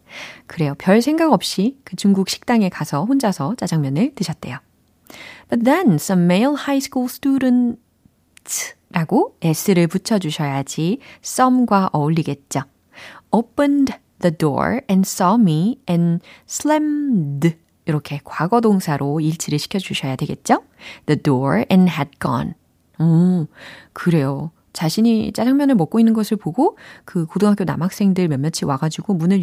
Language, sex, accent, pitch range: Korean, female, native, 155-230 Hz